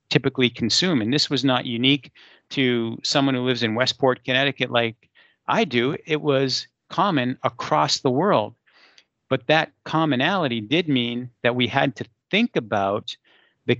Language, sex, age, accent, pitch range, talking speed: English, male, 50-69, American, 115-145 Hz, 150 wpm